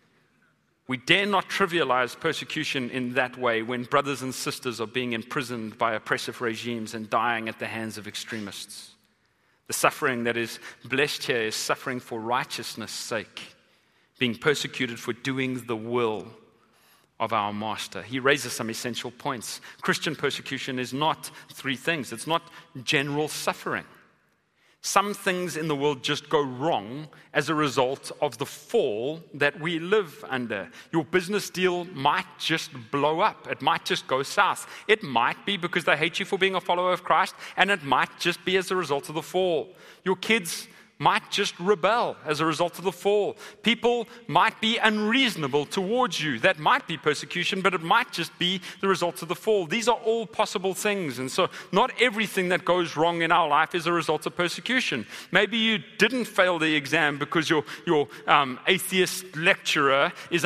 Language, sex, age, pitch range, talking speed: English, male, 30-49, 135-185 Hz, 175 wpm